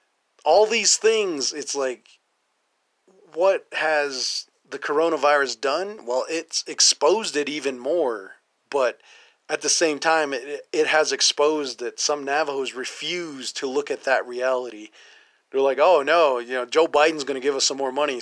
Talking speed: 160 wpm